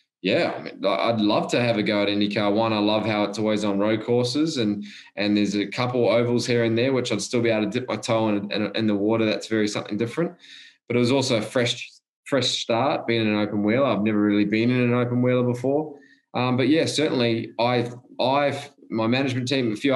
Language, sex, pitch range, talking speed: English, male, 110-125 Hz, 240 wpm